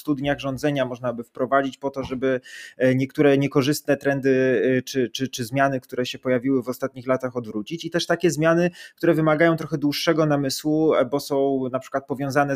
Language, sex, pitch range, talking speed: Polish, male, 125-145 Hz, 170 wpm